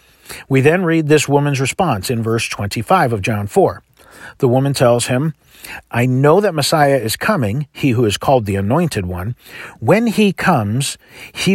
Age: 50-69